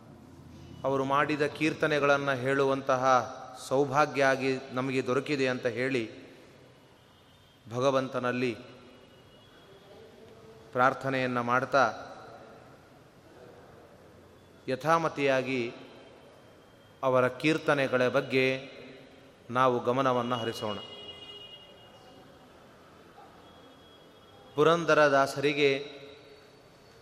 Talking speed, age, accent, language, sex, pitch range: 45 wpm, 30-49, native, Kannada, male, 130-170 Hz